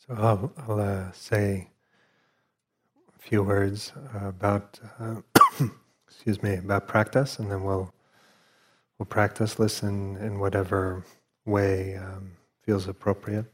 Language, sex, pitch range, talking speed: English, male, 95-110 Hz, 120 wpm